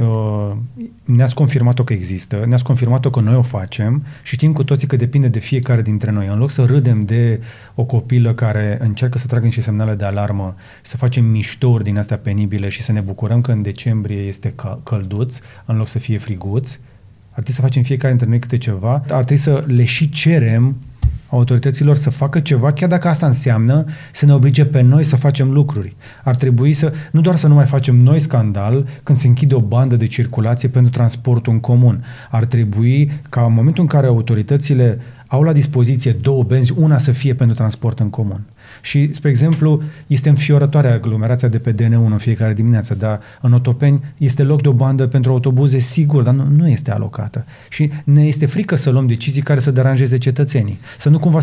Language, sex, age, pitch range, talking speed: Romanian, male, 30-49, 115-140 Hz, 200 wpm